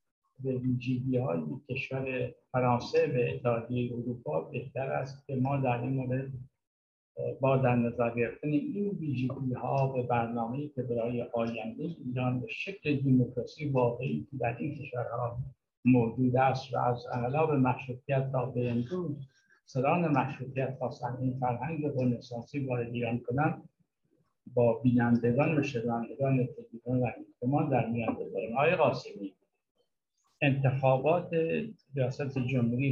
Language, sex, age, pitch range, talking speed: Persian, male, 60-79, 120-140 Hz, 120 wpm